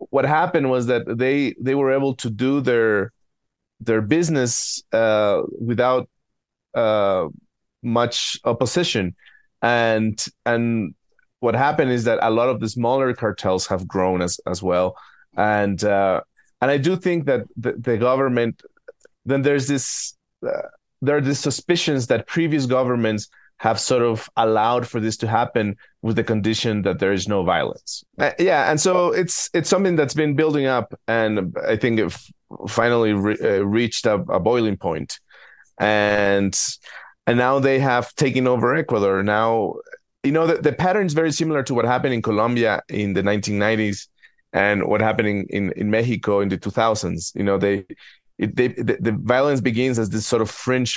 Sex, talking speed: male, 170 wpm